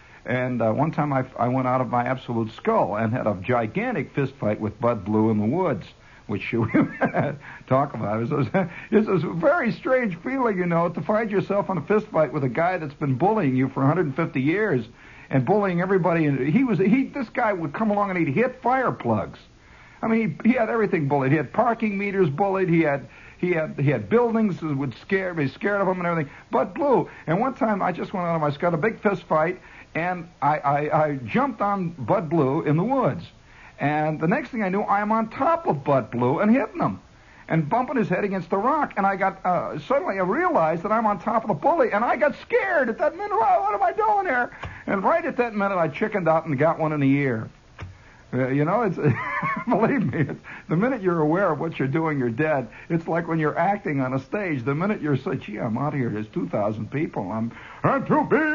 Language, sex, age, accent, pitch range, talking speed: English, male, 60-79, American, 135-205 Hz, 240 wpm